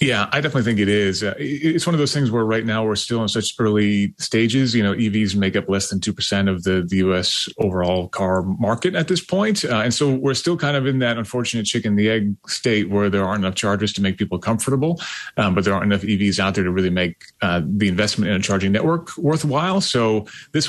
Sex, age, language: male, 30-49, English